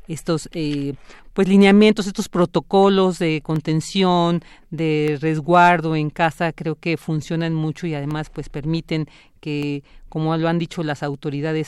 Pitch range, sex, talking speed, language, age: 150-170 Hz, female, 140 wpm, Spanish, 40-59